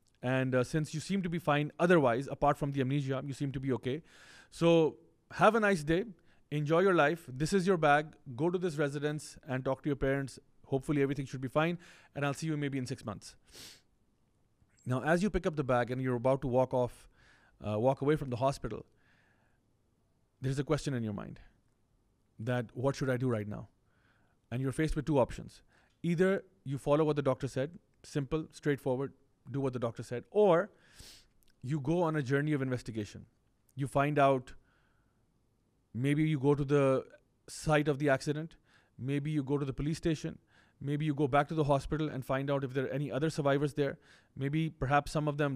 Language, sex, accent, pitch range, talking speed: English, male, Indian, 130-155 Hz, 200 wpm